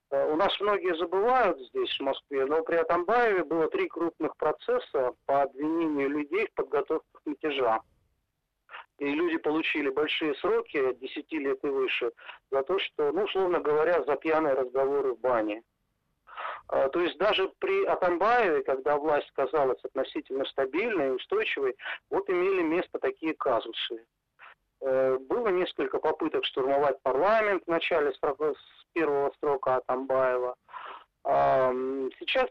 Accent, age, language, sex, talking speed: native, 40-59, Russian, male, 130 wpm